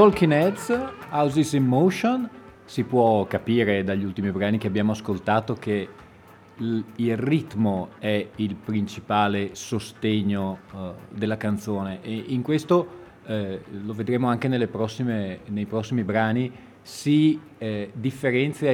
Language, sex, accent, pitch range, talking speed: Italian, male, native, 105-135 Hz, 120 wpm